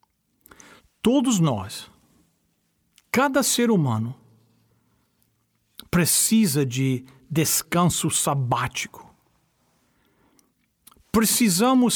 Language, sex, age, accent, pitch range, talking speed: Portuguese, male, 60-79, Brazilian, 145-215 Hz, 50 wpm